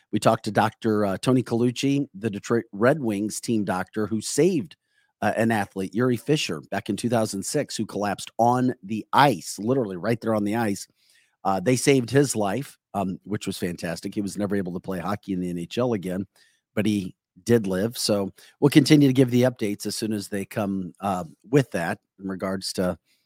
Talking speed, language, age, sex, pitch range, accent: 195 wpm, English, 40-59, male, 95-125 Hz, American